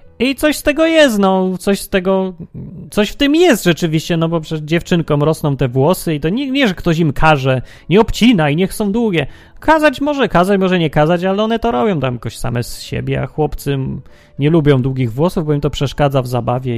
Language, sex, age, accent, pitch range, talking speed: Polish, male, 30-49, native, 130-195 Hz, 220 wpm